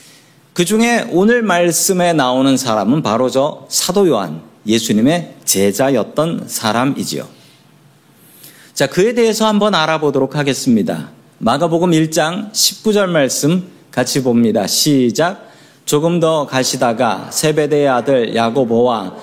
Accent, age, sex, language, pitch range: native, 40-59, male, Korean, 125-180 Hz